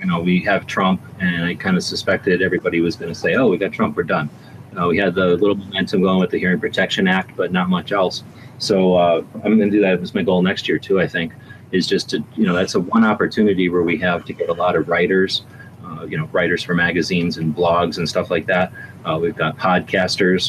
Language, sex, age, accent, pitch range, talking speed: English, male, 30-49, American, 80-95 Hz, 250 wpm